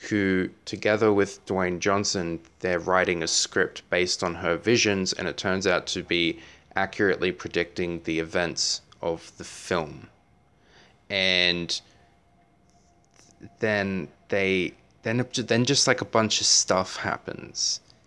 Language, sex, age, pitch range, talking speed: English, male, 20-39, 90-125 Hz, 125 wpm